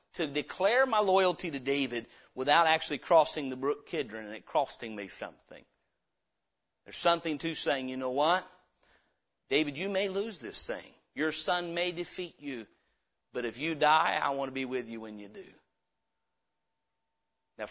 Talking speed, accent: 165 wpm, American